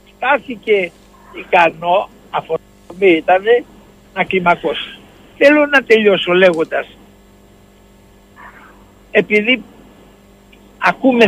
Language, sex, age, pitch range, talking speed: Greek, male, 60-79, 155-230 Hz, 75 wpm